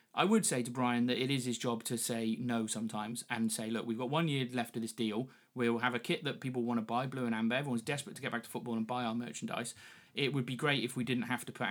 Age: 30-49